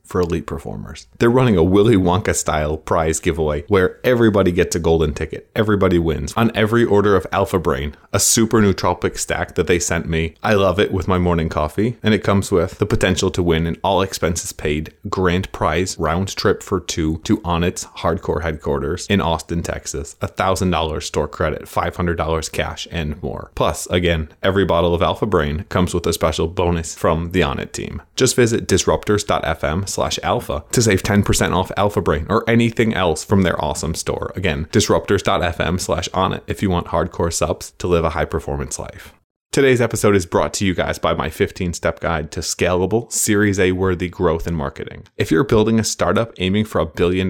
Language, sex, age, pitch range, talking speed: English, male, 20-39, 85-105 Hz, 190 wpm